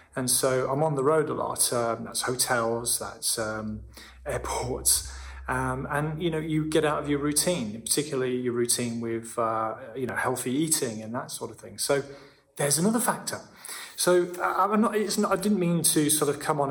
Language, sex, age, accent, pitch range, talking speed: English, male, 30-49, British, 115-150 Hz, 200 wpm